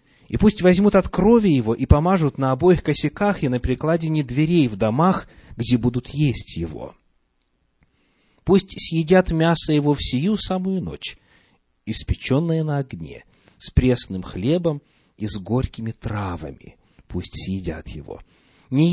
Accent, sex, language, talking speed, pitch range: native, male, Russian, 135 wpm, 105-165 Hz